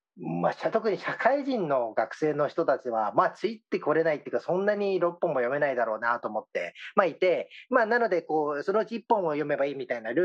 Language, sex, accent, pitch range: Japanese, male, native, 150-235 Hz